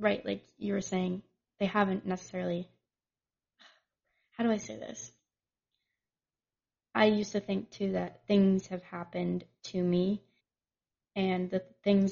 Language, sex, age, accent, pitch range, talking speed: English, female, 20-39, American, 180-200 Hz, 135 wpm